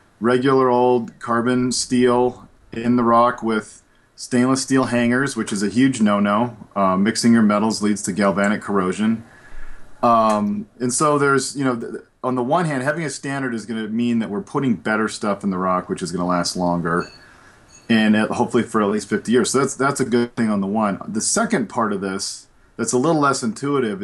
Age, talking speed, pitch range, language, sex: 40-59, 200 wpm, 110-135 Hz, English, male